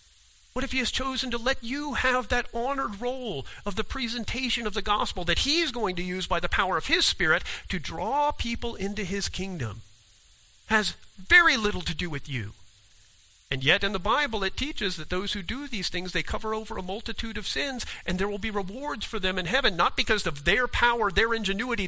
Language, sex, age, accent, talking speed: English, male, 50-69, American, 215 wpm